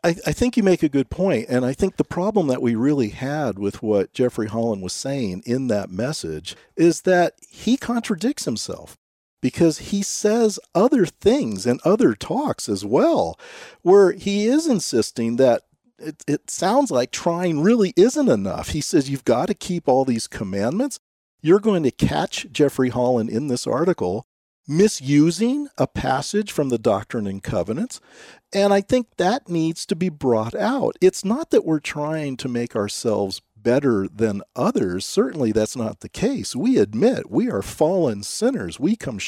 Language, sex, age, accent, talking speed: English, male, 50-69, American, 175 wpm